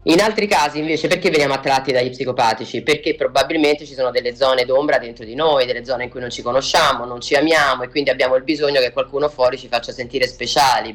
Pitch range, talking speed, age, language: 120-150 Hz, 225 wpm, 20-39, Italian